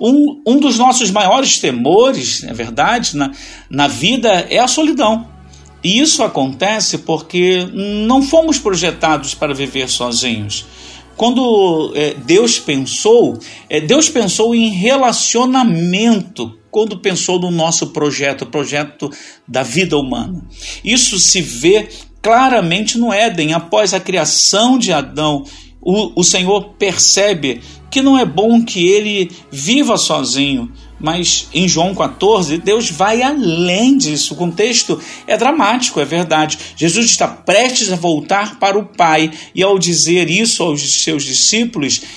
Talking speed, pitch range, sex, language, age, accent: 135 wpm, 165-240 Hz, male, Portuguese, 50-69, Brazilian